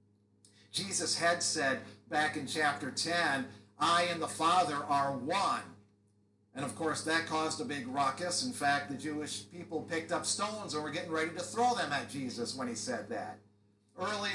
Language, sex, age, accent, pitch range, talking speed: English, male, 50-69, American, 105-170 Hz, 180 wpm